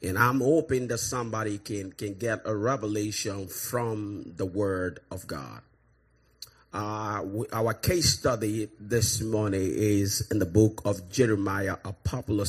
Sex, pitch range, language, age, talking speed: male, 95-120 Hz, English, 30-49, 140 wpm